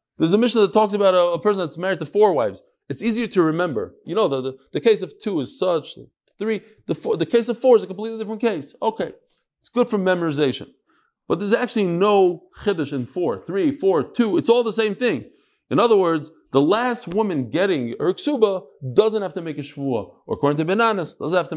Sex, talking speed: male, 230 wpm